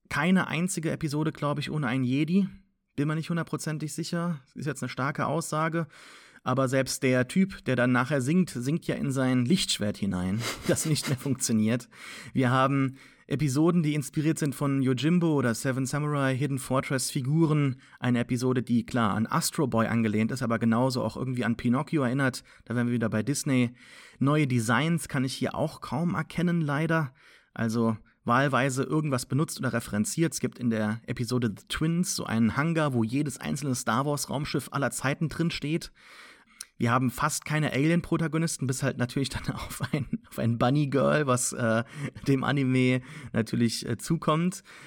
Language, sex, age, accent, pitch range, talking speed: English, male, 30-49, German, 120-155 Hz, 165 wpm